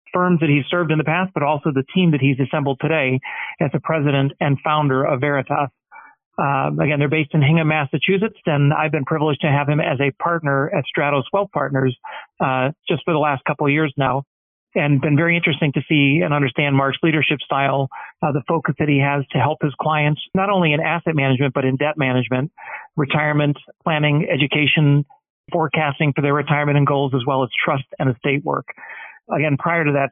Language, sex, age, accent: English, male, 40-59, American